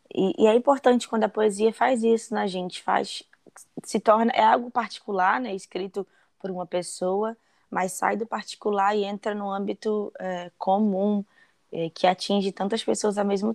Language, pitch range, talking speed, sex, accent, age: Portuguese, 190-220 Hz, 175 wpm, female, Brazilian, 10-29